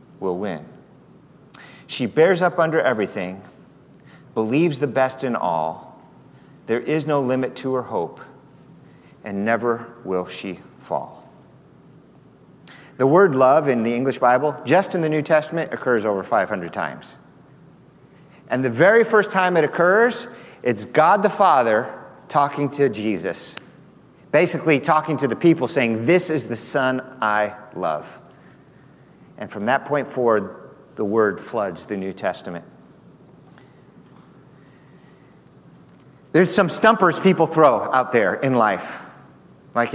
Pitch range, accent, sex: 125-165 Hz, American, male